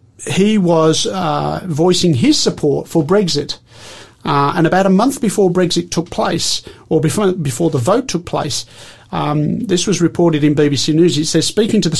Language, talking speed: English, 180 wpm